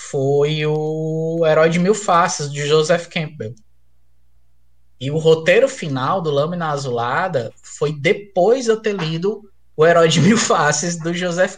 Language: Portuguese